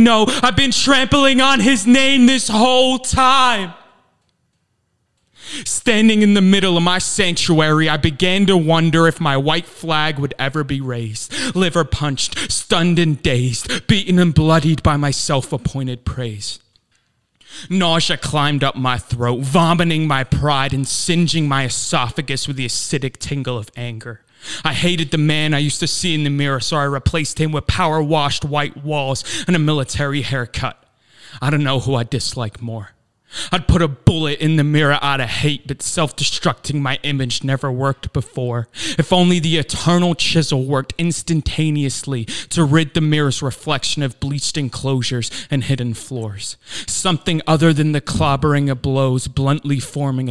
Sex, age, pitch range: male, 20-39, 130-165 Hz